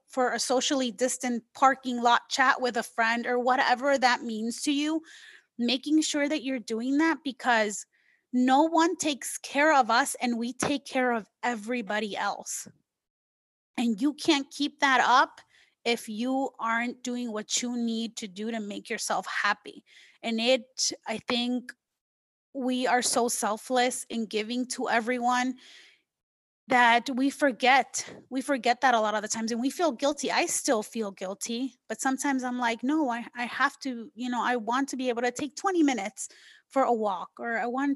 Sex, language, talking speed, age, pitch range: female, English, 175 wpm, 30-49, 230-270 Hz